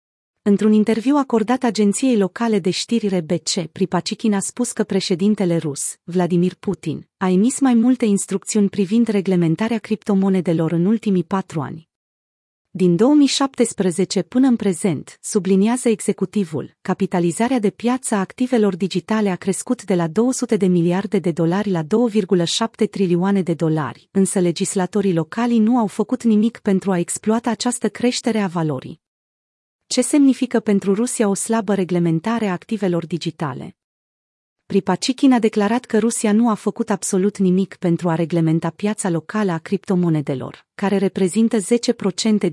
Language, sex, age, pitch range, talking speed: Romanian, female, 30-49, 180-225 Hz, 140 wpm